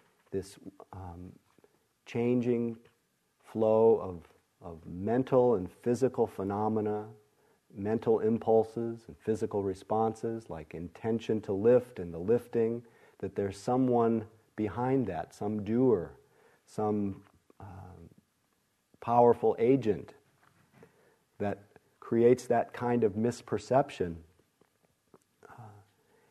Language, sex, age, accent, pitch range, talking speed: English, male, 50-69, American, 100-120 Hz, 90 wpm